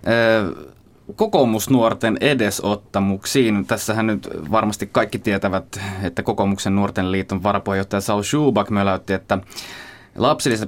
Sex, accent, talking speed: male, native, 95 wpm